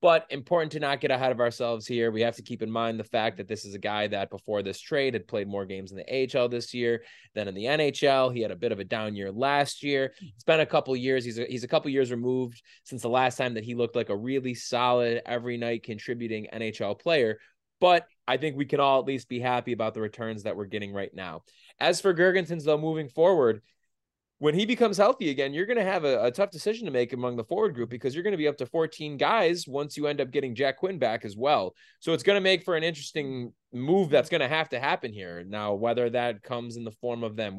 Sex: male